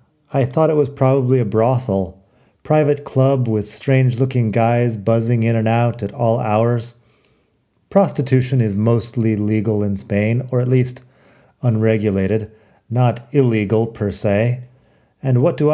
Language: English